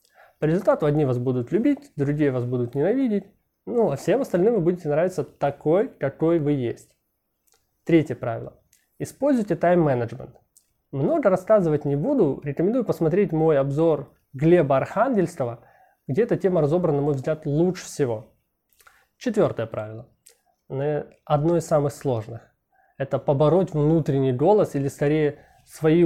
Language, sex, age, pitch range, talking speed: Russian, male, 20-39, 140-175 Hz, 130 wpm